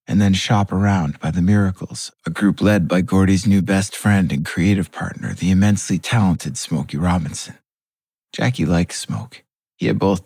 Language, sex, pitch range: English, male, 90-110 Hz